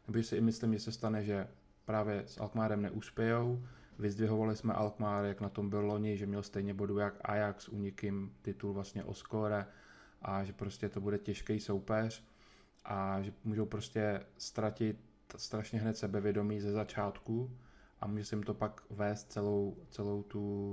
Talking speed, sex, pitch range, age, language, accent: 160 wpm, male, 100-110 Hz, 20-39, Czech, native